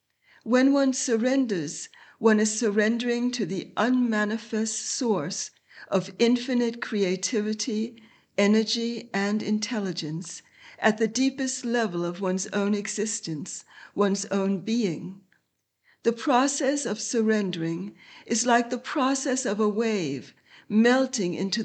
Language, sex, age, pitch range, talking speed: English, female, 60-79, 195-240 Hz, 110 wpm